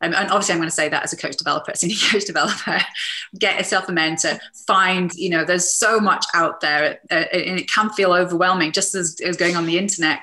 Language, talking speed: English, 225 wpm